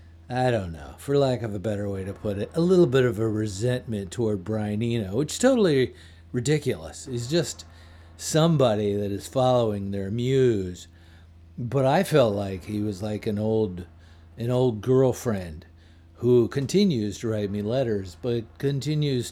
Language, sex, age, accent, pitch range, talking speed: English, male, 50-69, American, 95-125 Hz, 165 wpm